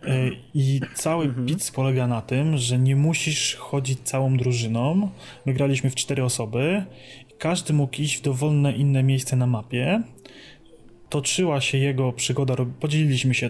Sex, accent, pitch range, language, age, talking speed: male, native, 125-150 Hz, Polish, 30-49, 140 wpm